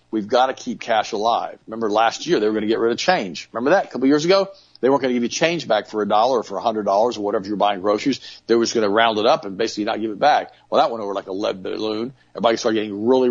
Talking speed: 310 wpm